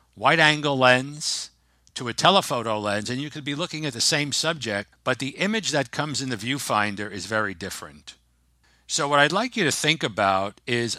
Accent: American